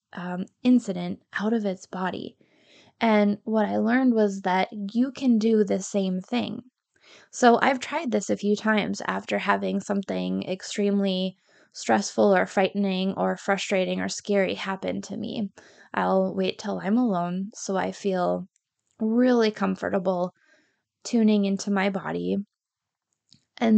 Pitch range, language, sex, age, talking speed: 190-220 Hz, English, female, 10-29, 135 wpm